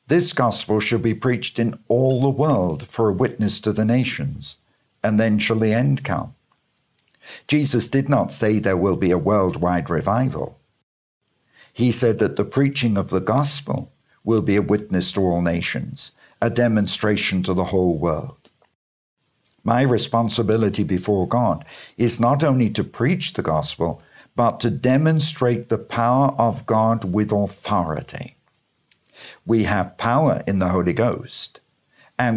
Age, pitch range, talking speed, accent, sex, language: 50-69, 100-125 Hz, 150 wpm, British, male, English